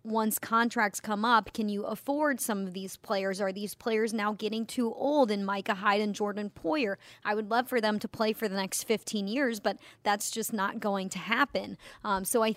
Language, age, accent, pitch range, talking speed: English, 30-49, American, 195-225 Hz, 220 wpm